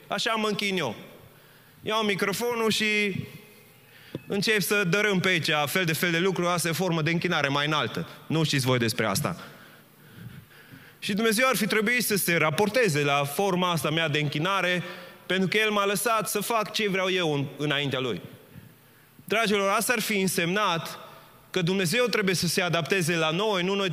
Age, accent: 20-39, native